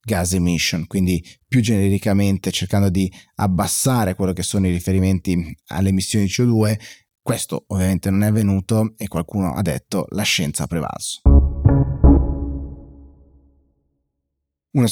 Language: Italian